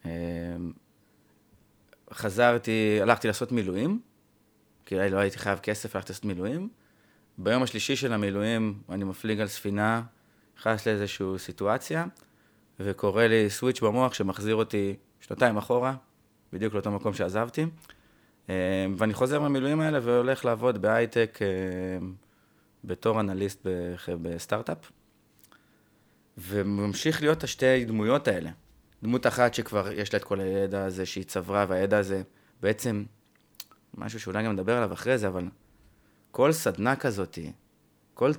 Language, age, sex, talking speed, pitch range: Hebrew, 30-49, male, 120 wpm, 100-120 Hz